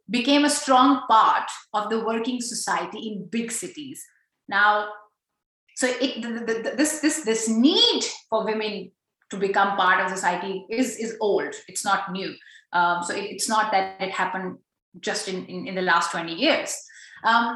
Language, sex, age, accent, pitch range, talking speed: English, female, 30-49, Indian, 195-280 Hz, 175 wpm